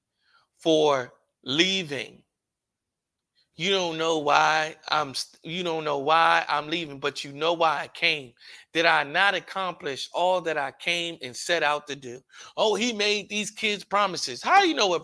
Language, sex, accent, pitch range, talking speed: English, male, American, 155-210 Hz, 170 wpm